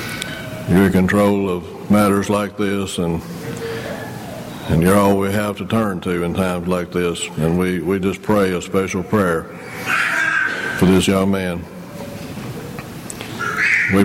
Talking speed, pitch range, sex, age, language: 135 wpm, 90-100 Hz, male, 60-79, English